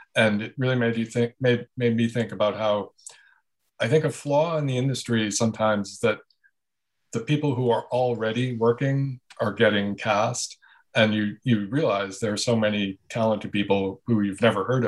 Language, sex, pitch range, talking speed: English, male, 105-120 Hz, 180 wpm